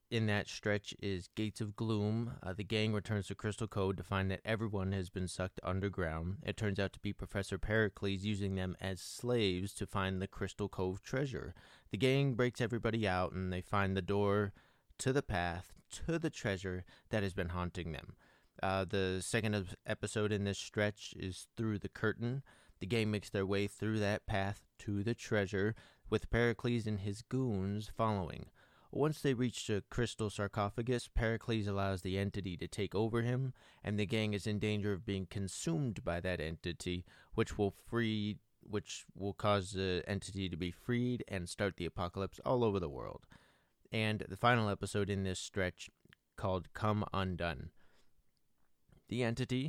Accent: American